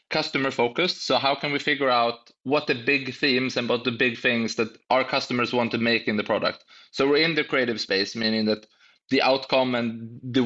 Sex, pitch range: male, 115-130 Hz